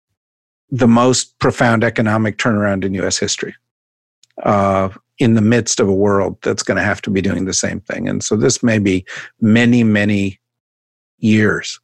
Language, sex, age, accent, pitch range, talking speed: English, male, 50-69, American, 100-120 Hz, 165 wpm